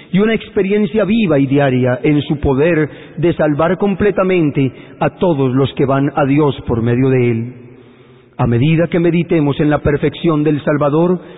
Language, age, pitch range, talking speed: Spanish, 40-59, 130-170 Hz, 170 wpm